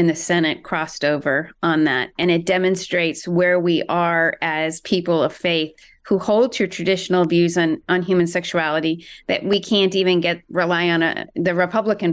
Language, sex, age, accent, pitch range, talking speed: English, female, 30-49, American, 170-200 Hz, 180 wpm